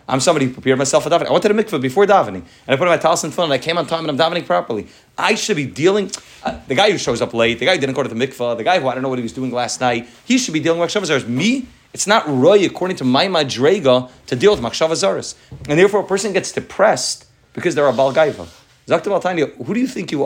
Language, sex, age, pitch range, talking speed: English, male, 30-49, 125-175 Hz, 295 wpm